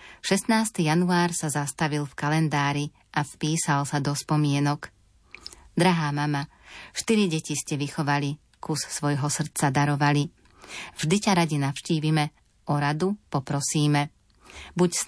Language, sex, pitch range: Slovak, female, 145-170 Hz